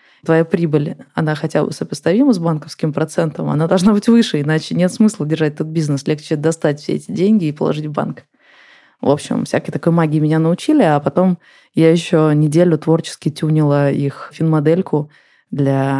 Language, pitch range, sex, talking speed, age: Russian, 145-175 Hz, female, 170 wpm, 20-39